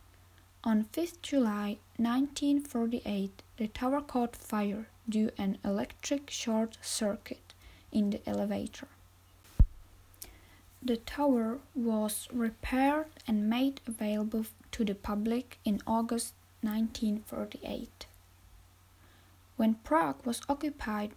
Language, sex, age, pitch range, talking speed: Czech, female, 10-29, 205-250 Hz, 95 wpm